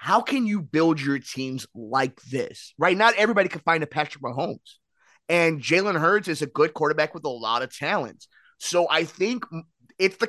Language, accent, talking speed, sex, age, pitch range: English, American, 190 wpm, male, 20-39, 165-230 Hz